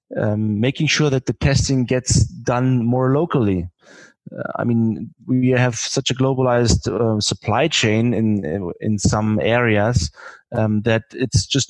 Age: 30-49